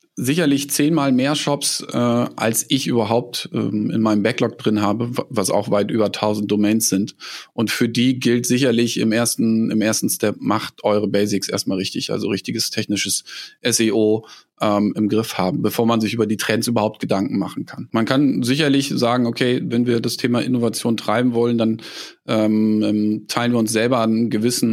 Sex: male